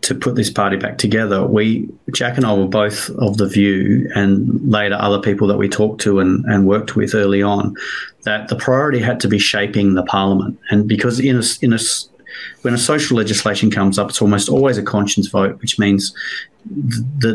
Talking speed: 205 wpm